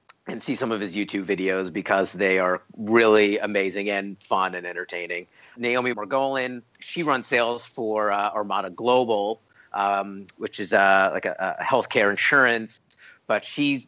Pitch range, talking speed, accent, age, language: 100-115 Hz, 155 wpm, American, 40-59, English